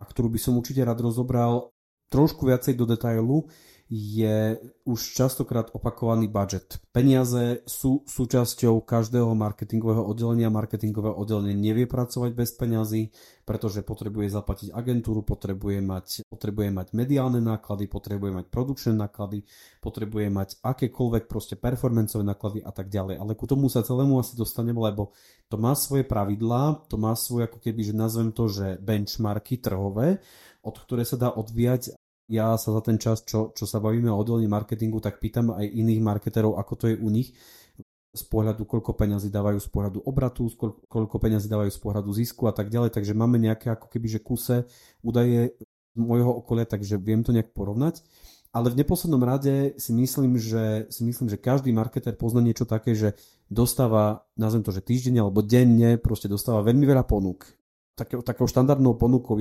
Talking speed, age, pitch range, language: 170 wpm, 30-49, 105-120 Hz, Slovak